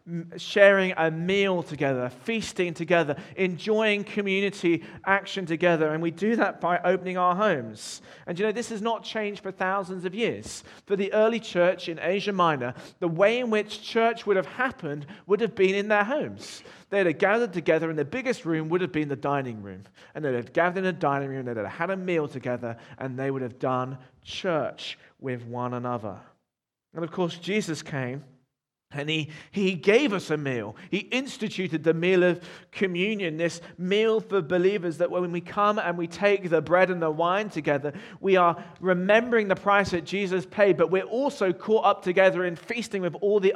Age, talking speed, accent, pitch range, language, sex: 40-59, 195 wpm, British, 155-200 Hz, English, male